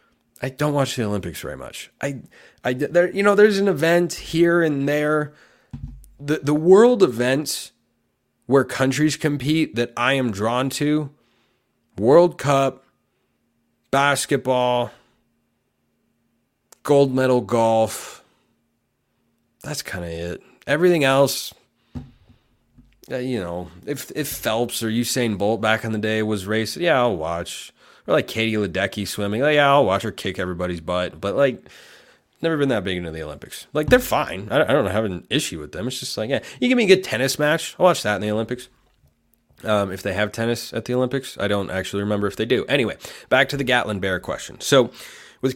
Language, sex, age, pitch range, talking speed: English, male, 30-49, 105-145 Hz, 175 wpm